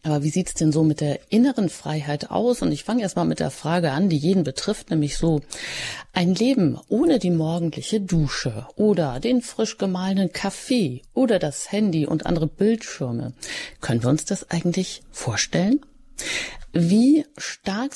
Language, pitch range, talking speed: German, 150-195 Hz, 165 wpm